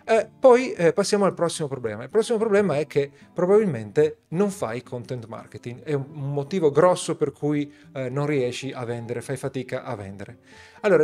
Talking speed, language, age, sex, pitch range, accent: 180 wpm, Italian, 40-59, male, 130-160 Hz, native